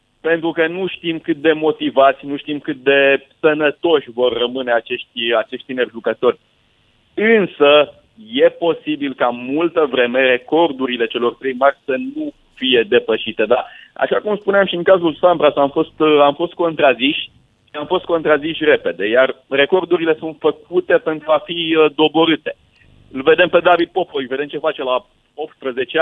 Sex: male